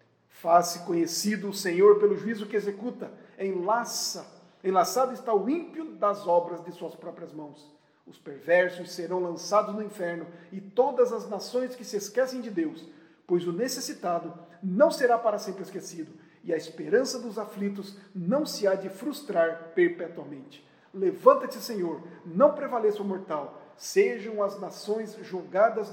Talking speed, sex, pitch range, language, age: 145 wpm, male, 180-230 Hz, Portuguese, 50-69